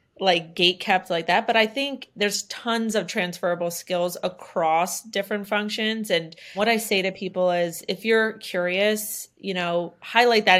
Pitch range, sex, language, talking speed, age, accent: 175-200 Hz, female, English, 170 wpm, 30-49, American